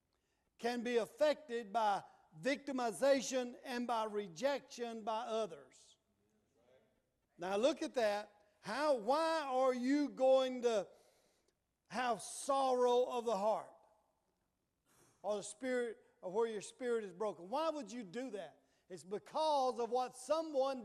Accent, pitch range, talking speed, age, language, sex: American, 220-270 Hz, 115 wpm, 50-69, English, male